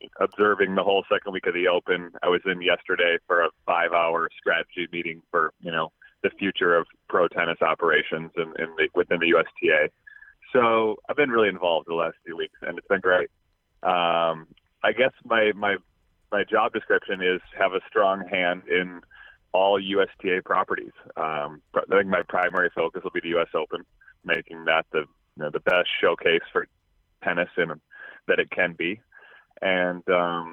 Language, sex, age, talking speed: English, male, 30-49, 175 wpm